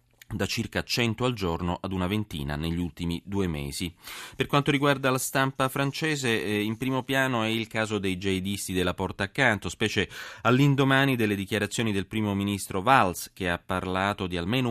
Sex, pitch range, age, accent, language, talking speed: male, 85-110 Hz, 30-49, native, Italian, 170 wpm